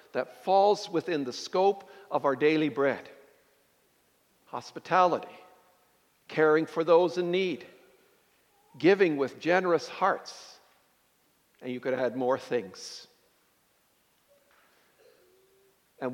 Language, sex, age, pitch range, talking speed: English, male, 60-79, 155-245 Hz, 95 wpm